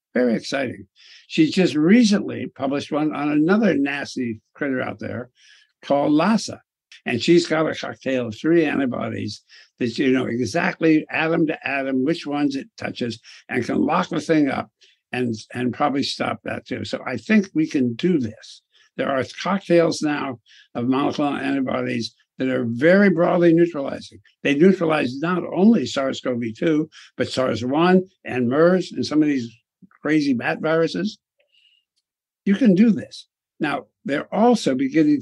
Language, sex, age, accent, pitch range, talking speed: English, male, 60-79, American, 125-185 Hz, 150 wpm